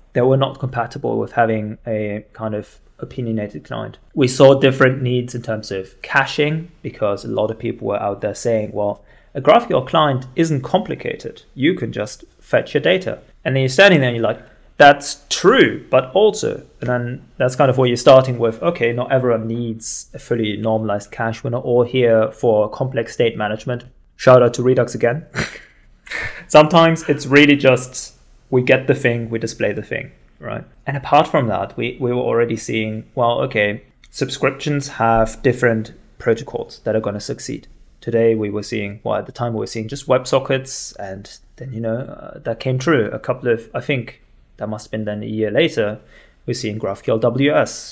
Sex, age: male, 20-39